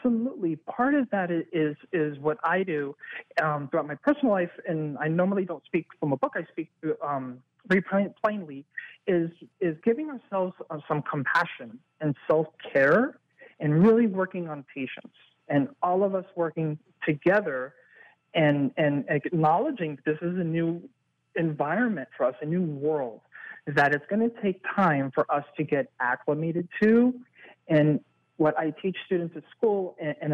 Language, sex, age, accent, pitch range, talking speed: English, male, 40-59, American, 145-185 Hz, 155 wpm